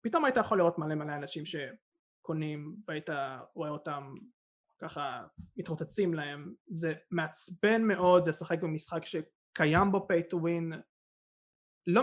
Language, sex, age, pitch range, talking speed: Hebrew, male, 20-39, 155-205 Hz, 115 wpm